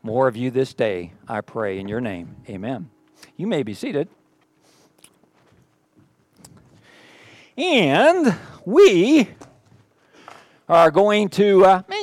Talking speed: 110 wpm